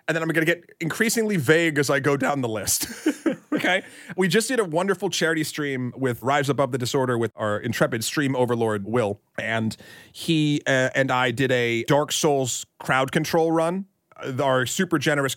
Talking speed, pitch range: 185 wpm, 115-150 Hz